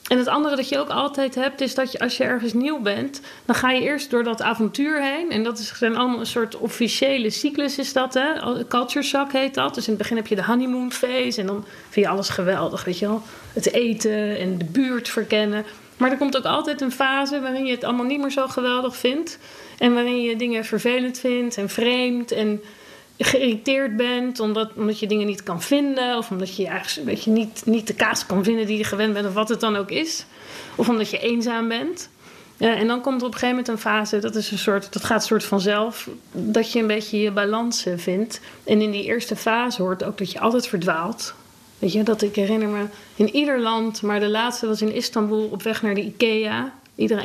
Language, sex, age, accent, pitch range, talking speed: Dutch, female, 40-59, Dutch, 210-250 Hz, 225 wpm